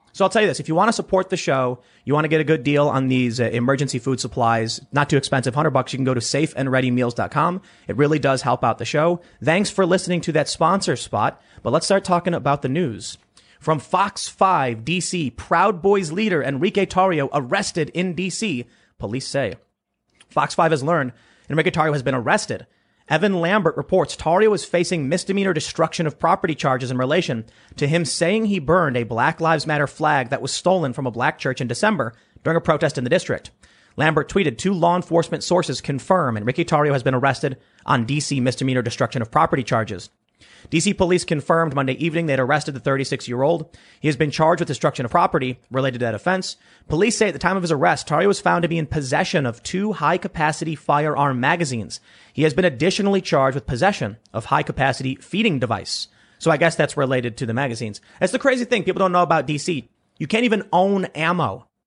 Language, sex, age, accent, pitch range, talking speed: English, male, 30-49, American, 130-175 Hz, 205 wpm